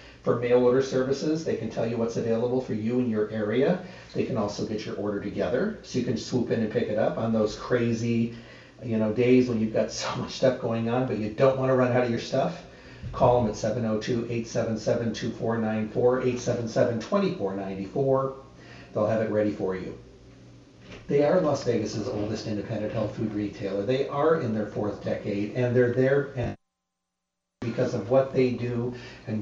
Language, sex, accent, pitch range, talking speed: English, male, American, 110-125 Hz, 185 wpm